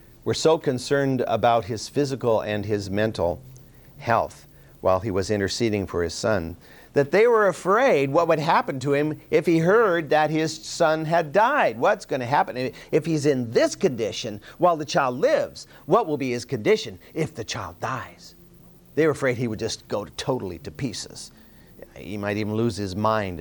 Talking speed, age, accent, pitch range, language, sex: 185 wpm, 50-69, American, 105-145 Hz, English, male